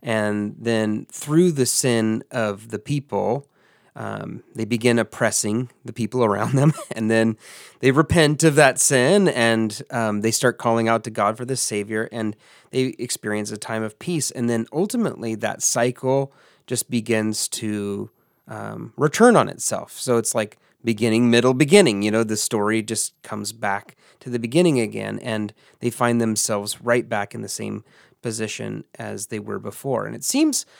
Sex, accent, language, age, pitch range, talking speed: male, American, English, 30-49, 115-150 Hz, 170 wpm